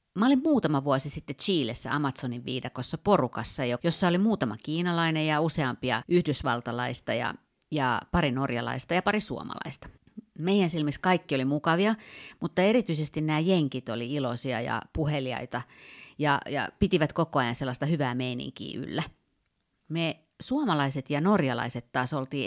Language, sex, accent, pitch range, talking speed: Finnish, female, native, 130-175 Hz, 135 wpm